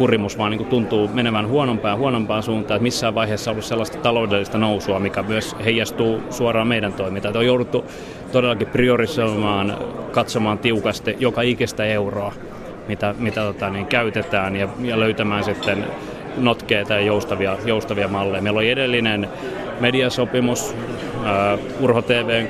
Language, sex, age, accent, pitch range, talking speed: Finnish, male, 30-49, native, 105-125 Hz, 135 wpm